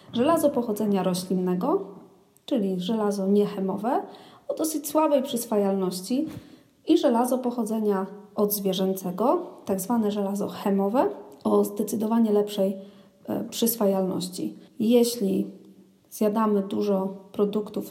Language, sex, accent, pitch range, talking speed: Polish, female, native, 200-240 Hz, 85 wpm